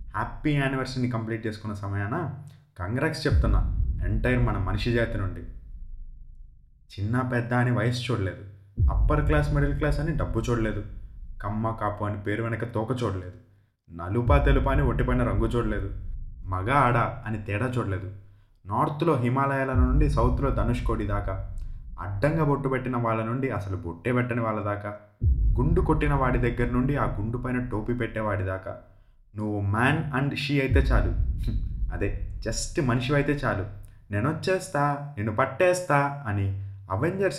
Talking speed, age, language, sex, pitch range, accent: 130 wpm, 20-39, Telugu, male, 100-140 Hz, native